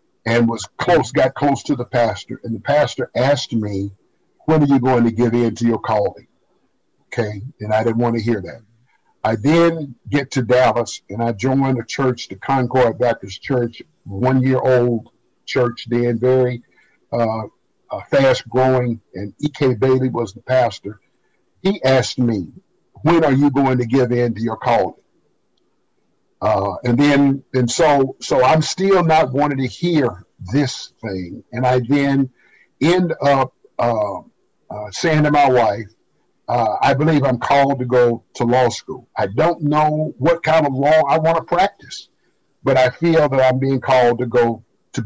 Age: 50-69